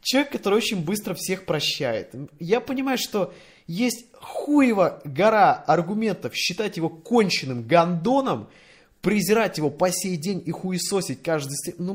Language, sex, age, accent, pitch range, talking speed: Russian, male, 20-39, native, 150-235 Hz, 135 wpm